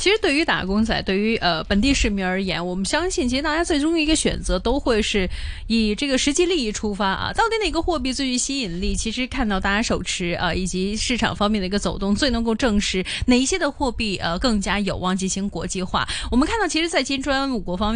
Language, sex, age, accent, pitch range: Chinese, female, 20-39, native, 195-275 Hz